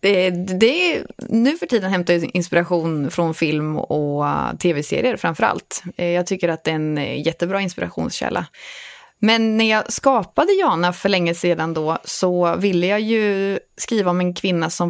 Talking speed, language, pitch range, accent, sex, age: 155 wpm, English, 170-225 Hz, Swedish, female, 20-39